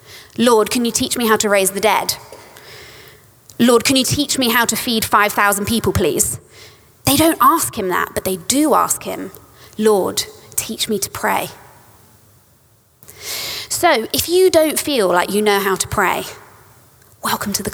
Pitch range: 165-260 Hz